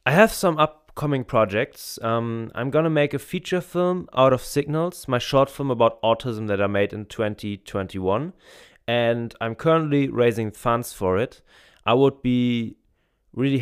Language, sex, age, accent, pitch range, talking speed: English, male, 20-39, German, 105-140 Hz, 165 wpm